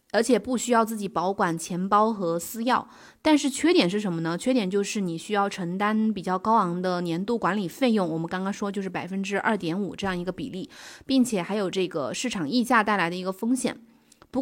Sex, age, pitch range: female, 20-39, 190-245 Hz